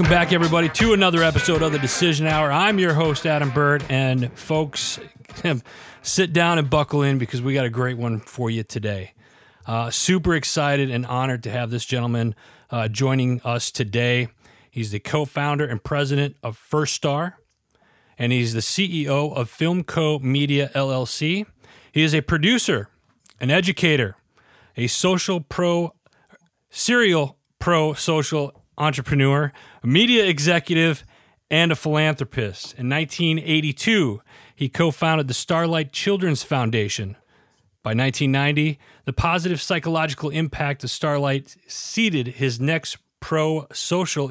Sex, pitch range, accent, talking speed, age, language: male, 125-160 Hz, American, 135 wpm, 40-59, English